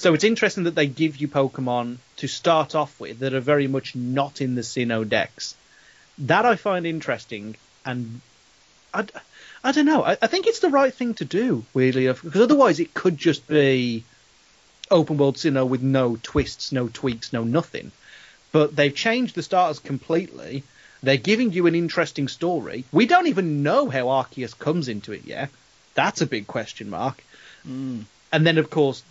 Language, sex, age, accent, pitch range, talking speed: English, male, 30-49, British, 130-175 Hz, 180 wpm